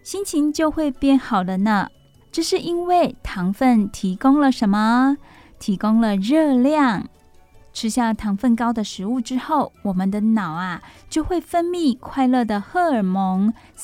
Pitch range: 205-270 Hz